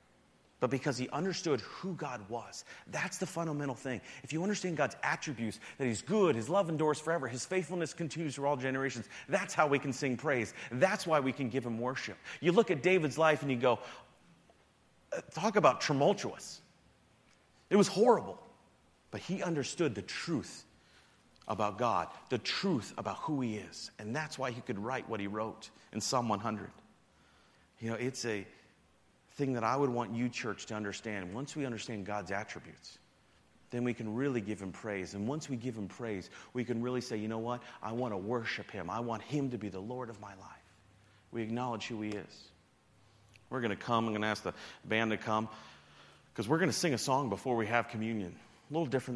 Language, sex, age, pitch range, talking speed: English, male, 40-59, 110-140 Hz, 200 wpm